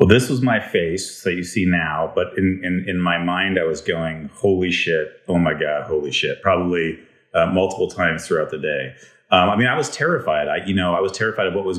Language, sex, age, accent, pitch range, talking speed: English, male, 30-49, American, 85-100 Hz, 245 wpm